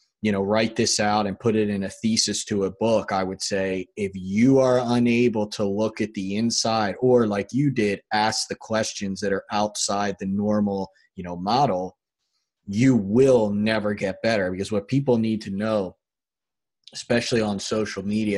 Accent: American